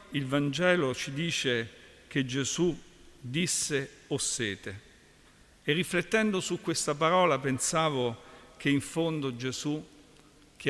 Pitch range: 125-155 Hz